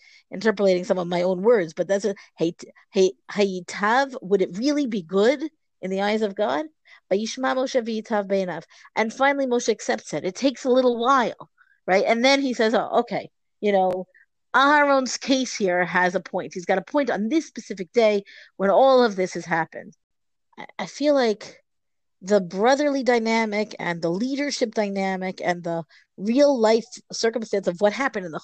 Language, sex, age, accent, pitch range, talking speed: English, female, 50-69, American, 185-245 Hz, 175 wpm